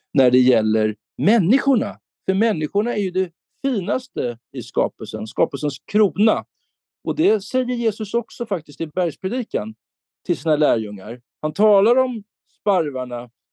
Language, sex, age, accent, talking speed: Swedish, male, 50-69, native, 130 wpm